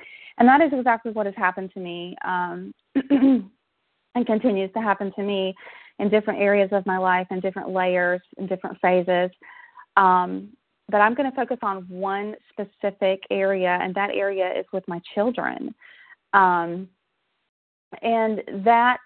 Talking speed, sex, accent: 150 wpm, female, American